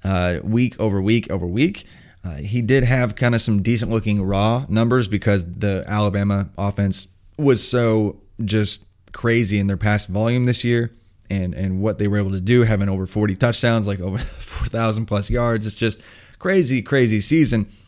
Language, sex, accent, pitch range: English, male, American, 100-120 Hz